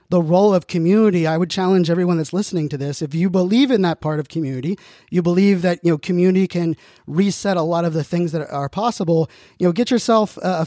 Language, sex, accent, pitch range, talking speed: English, male, American, 160-190 Hz, 230 wpm